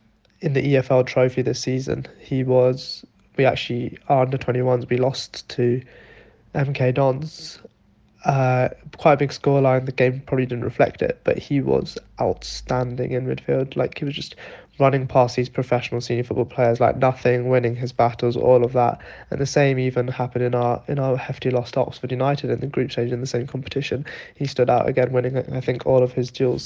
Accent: British